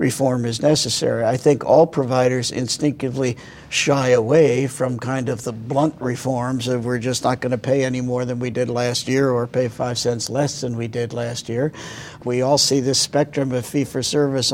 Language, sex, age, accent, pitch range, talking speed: English, male, 60-79, American, 125-145 Hz, 195 wpm